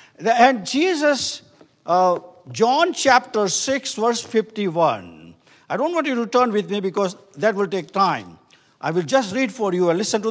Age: 50-69